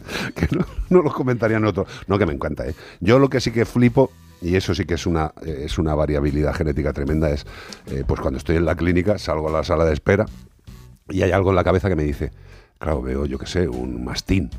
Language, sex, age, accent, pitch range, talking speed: Spanish, male, 50-69, Spanish, 75-110 Hz, 245 wpm